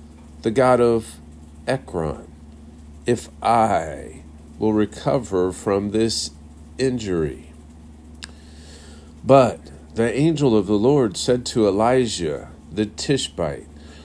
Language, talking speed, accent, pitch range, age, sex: English, 95 wpm, American, 80-125 Hz, 50-69, male